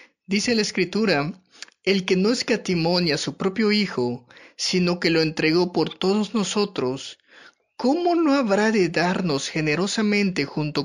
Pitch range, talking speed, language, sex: 150-195 Hz, 140 wpm, Spanish, male